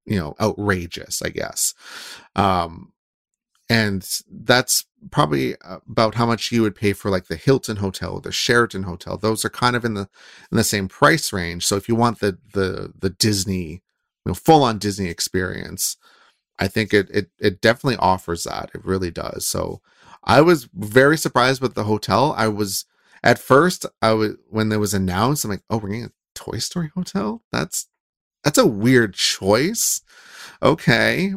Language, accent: English, American